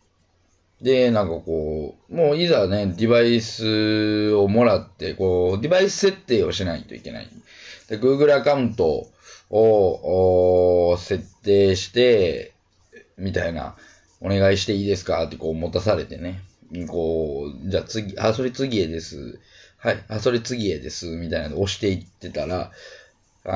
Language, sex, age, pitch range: Japanese, male, 20-39, 90-130 Hz